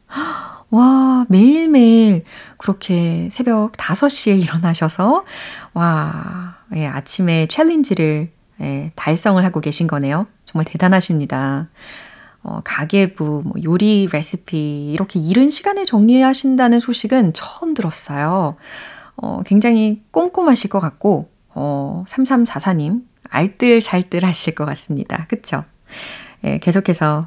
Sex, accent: female, native